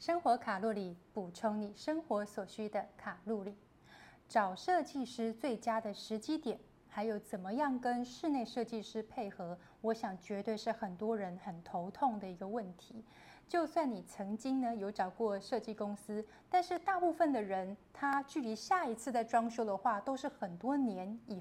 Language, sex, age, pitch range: Chinese, female, 30-49, 210-260 Hz